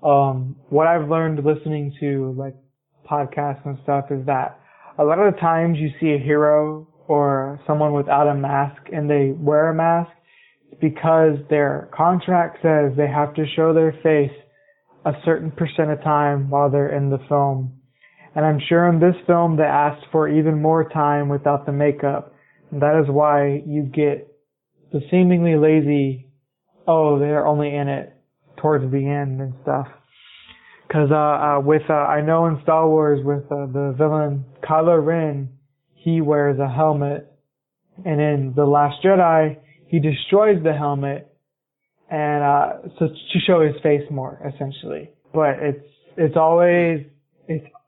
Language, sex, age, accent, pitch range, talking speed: English, male, 20-39, American, 145-160 Hz, 160 wpm